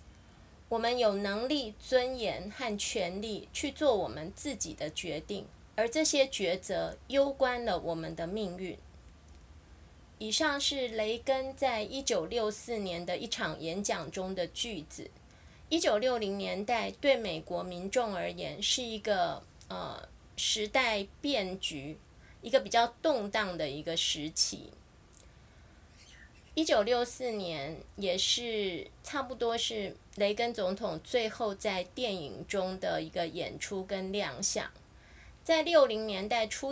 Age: 20-39